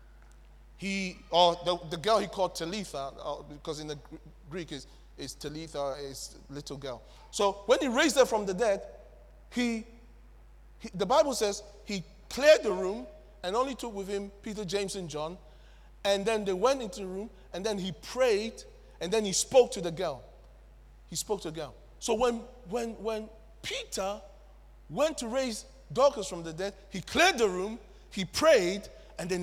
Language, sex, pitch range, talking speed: English, male, 175-255 Hz, 180 wpm